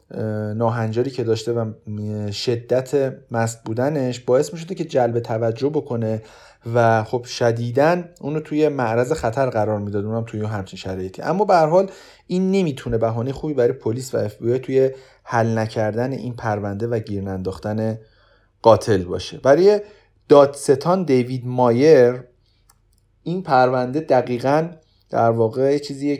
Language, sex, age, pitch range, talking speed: Persian, male, 30-49, 110-135 Hz, 135 wpm